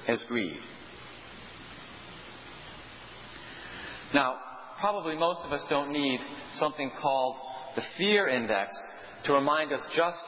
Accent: American